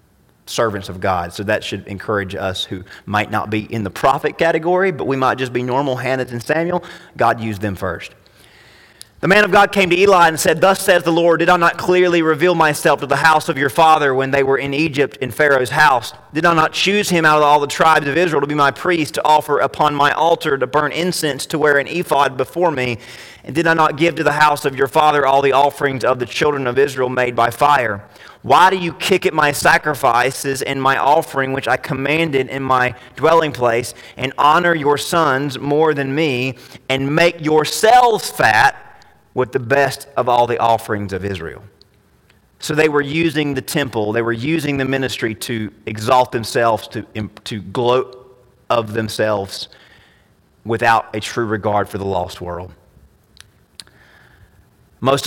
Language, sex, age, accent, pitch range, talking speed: English, male, 30-49, American, 115-155 Hz, 195 wpm